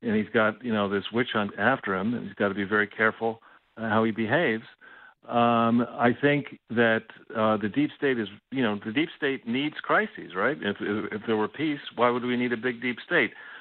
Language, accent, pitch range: English, American, 110-135 Hz